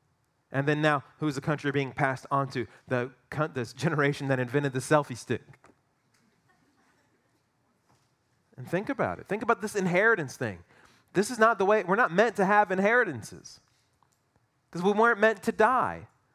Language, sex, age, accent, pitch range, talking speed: English, male, 30-49, American, 135-195 Hz, 160 wpm